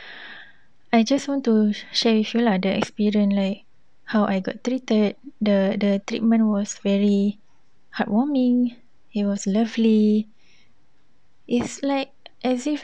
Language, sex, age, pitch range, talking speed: Malay, female, 20-39, 195-235 Hz, 130 wpm